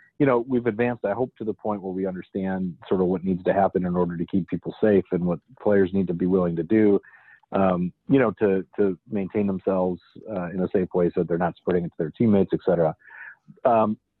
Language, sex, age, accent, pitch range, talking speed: English, male, 40-59, American, 95-110 Hz, 240 wpm